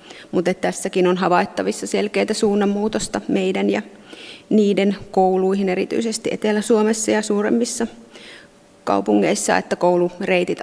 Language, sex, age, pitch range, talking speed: Finnish, female, 30-49, 185-210 Hz, 95 wpm